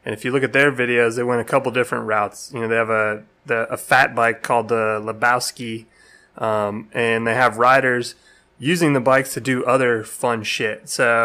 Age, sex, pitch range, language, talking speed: 20-39, male, 115-130 Hz, English, 210 wpm